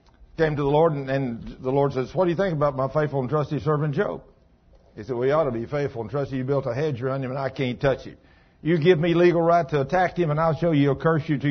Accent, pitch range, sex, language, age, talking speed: American, 135-180 Hz, male, English, 60-79, 290 wpm